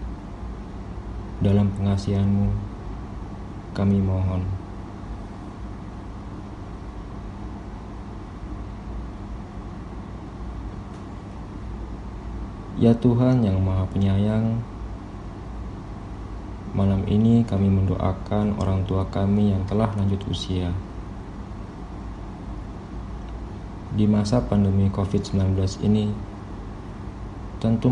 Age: 20-39